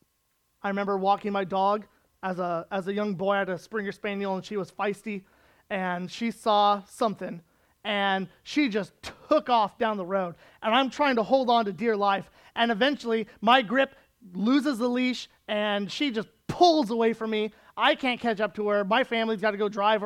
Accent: American